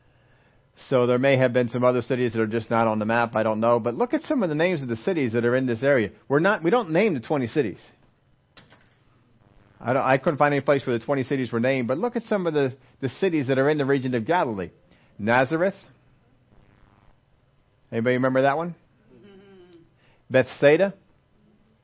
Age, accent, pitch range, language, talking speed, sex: 40-59, American, 120-165 Hz, English, 205 wpm, male